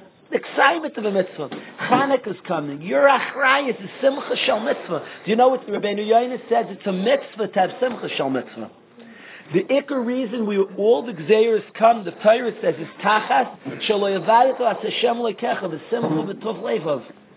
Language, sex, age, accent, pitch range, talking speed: English, male, 50-69, American, 180-235 Hz, 160 wpm